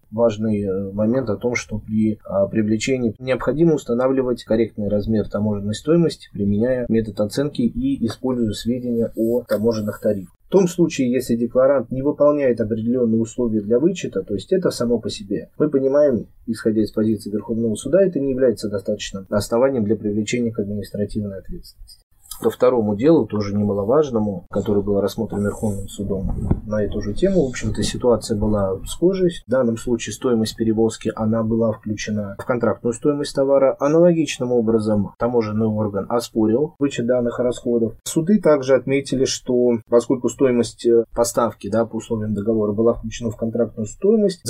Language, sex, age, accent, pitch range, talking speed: Russian, male, 30-49, native, 105-135 Hz, 150 wpm